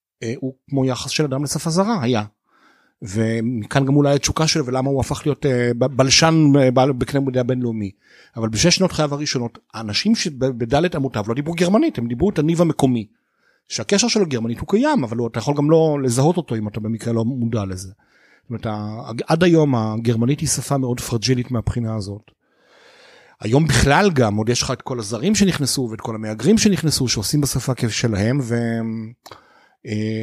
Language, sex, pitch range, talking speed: Hebrew, male, 115-150 Hz, 165 wpm